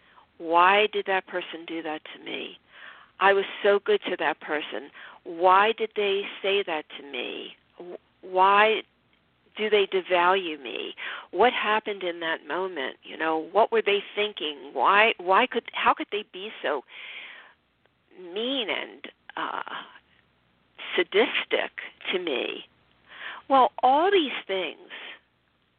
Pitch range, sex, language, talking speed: 175-280 Hz, female, English, 130 wpm